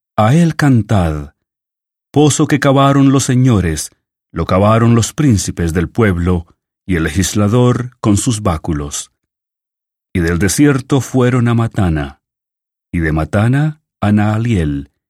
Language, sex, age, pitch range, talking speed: English, male, 40-59, 90-130 Hz, 125 wpm